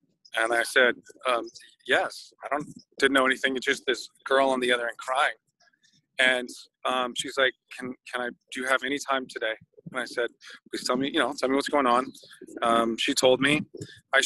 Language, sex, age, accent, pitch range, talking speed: English, male, 30-49, American, 125-150 Hz, 210 wpm